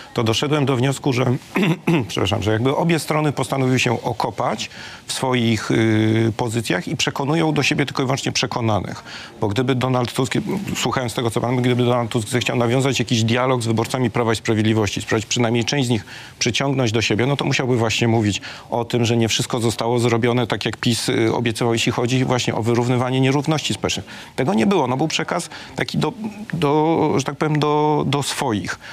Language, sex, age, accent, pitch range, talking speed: Polish, male, 40-59, native, 110-130 Hz, 190 wpm